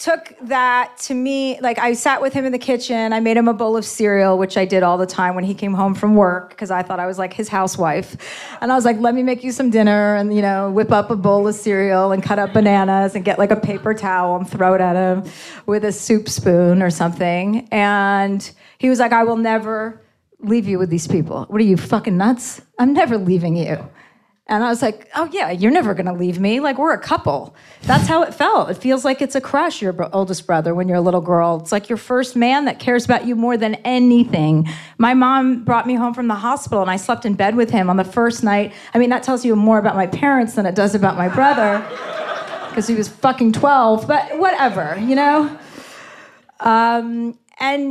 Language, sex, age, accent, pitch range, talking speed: English, female, 30-49, American, 195-250 Hz, 240 wpm